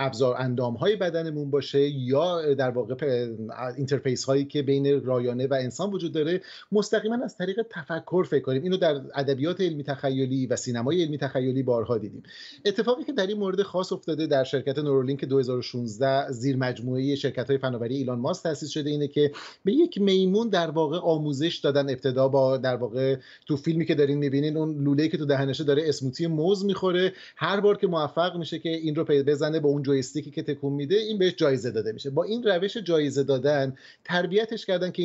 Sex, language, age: male, Persian, 30-49